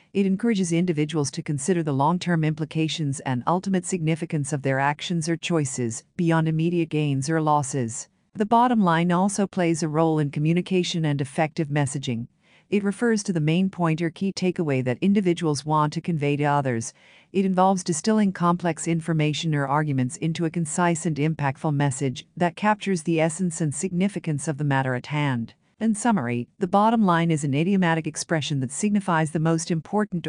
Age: 50-69